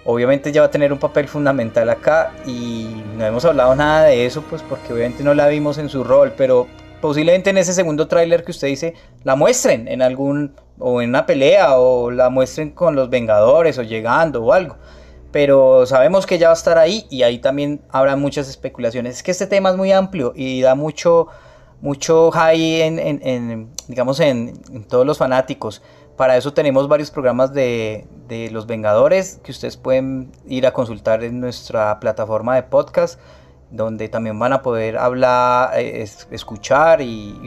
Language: Spanish